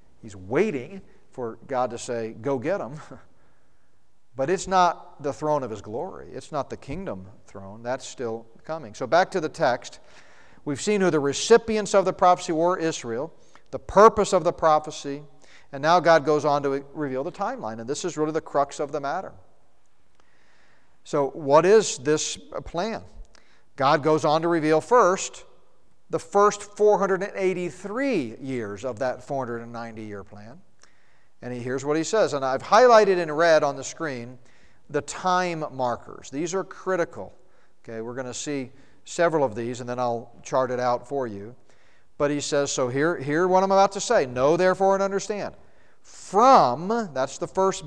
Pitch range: 125-180 Hz